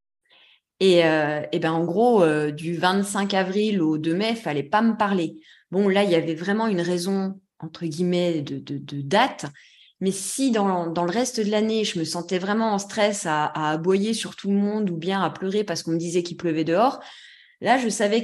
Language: French